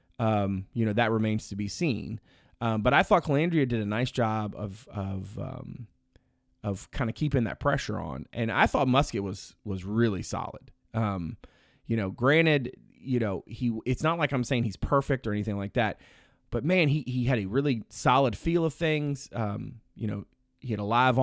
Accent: American